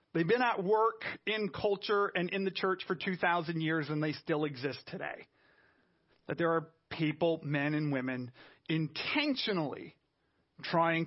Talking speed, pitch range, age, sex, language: 145 wpm, 155-200 Hz, 30-49, male, English